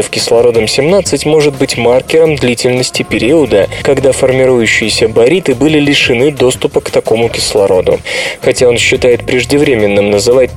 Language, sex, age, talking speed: Russian, male, 20-39, 115 wpm